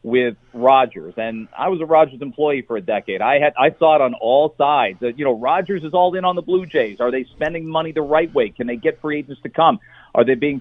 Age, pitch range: 40-59, 125-170 Hz